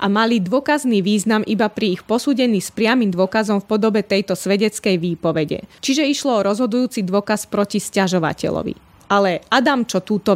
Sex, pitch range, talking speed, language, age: female, 185-230 Hz, 155 wpm, Slovak, 20-39